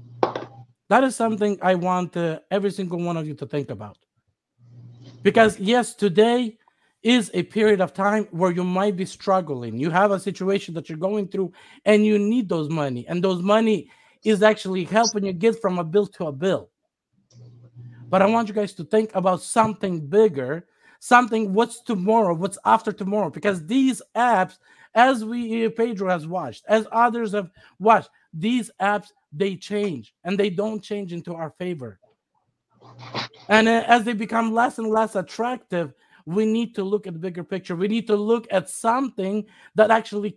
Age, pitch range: 50-69, 180-230 Hz